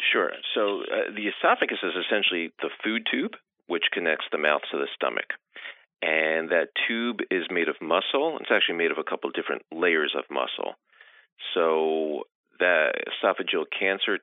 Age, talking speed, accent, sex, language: 40-59, 165 wpm, American, male, English